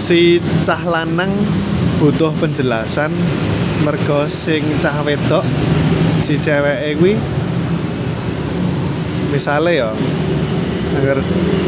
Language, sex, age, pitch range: Indonesian, male, 20-39, 135-170 Hz